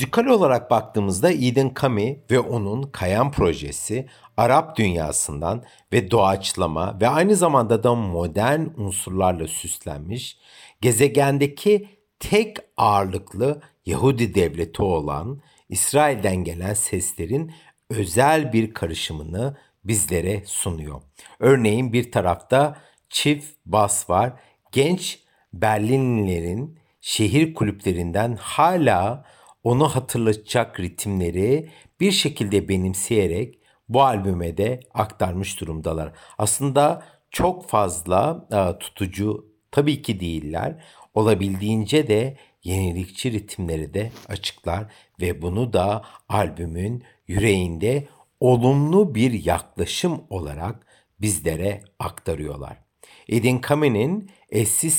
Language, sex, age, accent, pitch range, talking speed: Turkish, male, 60-79, native, 95-135 Hz, 90 wpm